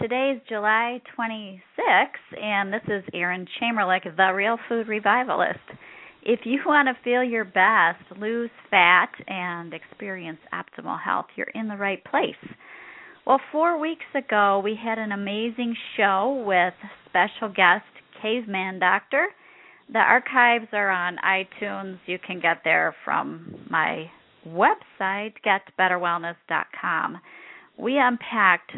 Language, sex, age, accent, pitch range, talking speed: English, female, 40-59, American, 185-235 Hz, 125 wpm